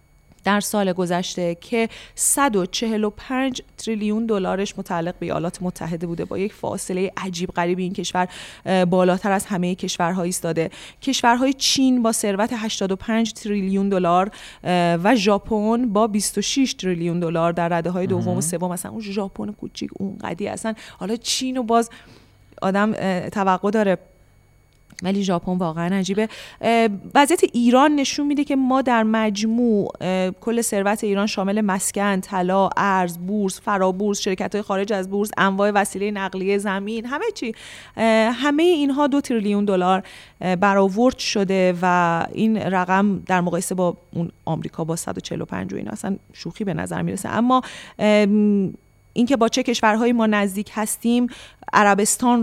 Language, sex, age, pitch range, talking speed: Persian, female, 30-49, 185-225 Hz, 140 wpm